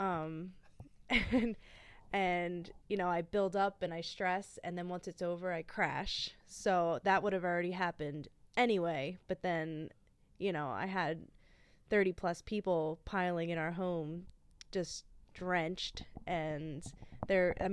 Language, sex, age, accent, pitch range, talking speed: English, female, 20-39, American, 170-190 Hz, 140 wpm